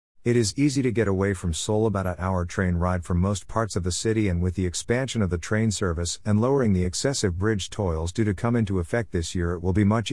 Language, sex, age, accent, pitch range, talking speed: English, male, 50-69, American, 90-115 Hz, 260 wpm